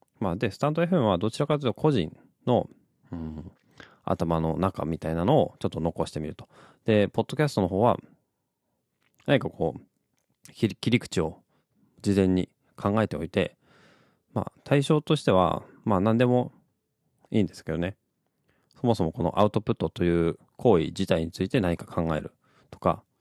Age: 20-39